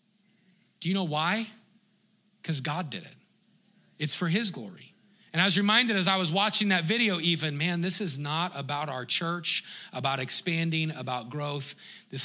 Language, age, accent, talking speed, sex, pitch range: English, 40-59, American, 170 wpm, male, 175-210 Hz